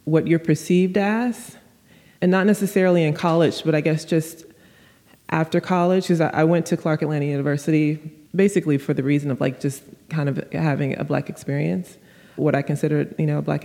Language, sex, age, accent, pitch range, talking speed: English, female, 20-39, American, 150-180 Hz, 185 wpm